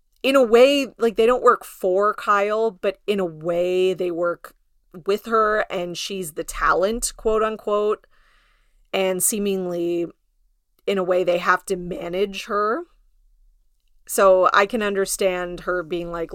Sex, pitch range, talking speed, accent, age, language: female, 180-220 Hz, 145 wpm, American, 30-49, English